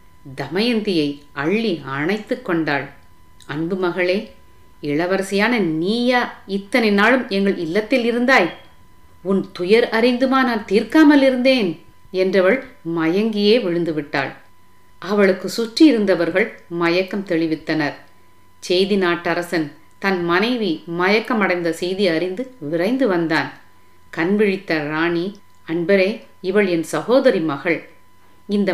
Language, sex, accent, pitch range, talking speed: Tamil, female, native, 160-210 Hz, 90 wpm